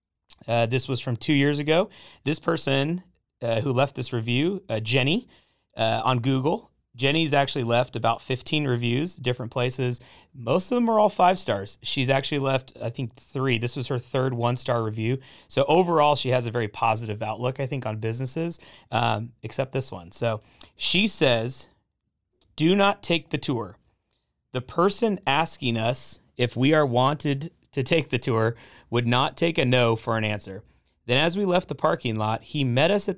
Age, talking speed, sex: 30-49, 185 wpm, male